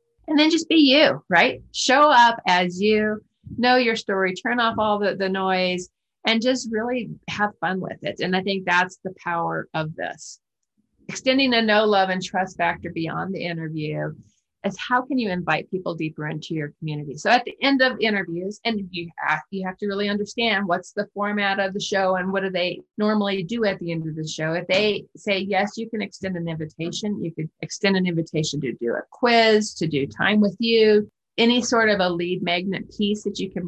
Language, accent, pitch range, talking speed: English, American, 165-205 Hz, 210 wpm